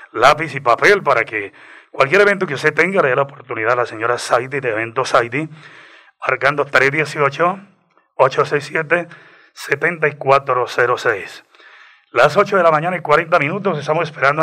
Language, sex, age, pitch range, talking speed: Spanish, male, 30-49, 130-165 Hz, 135 wpm